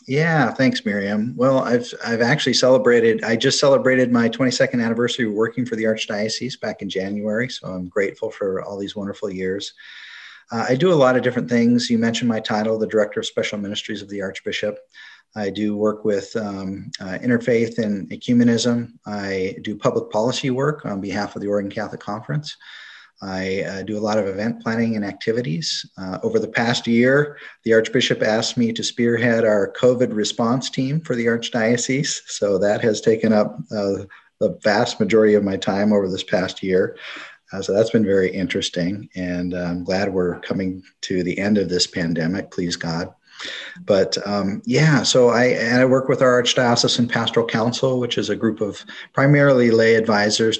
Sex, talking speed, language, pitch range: male, 185 wpm, English, 100-125 Hz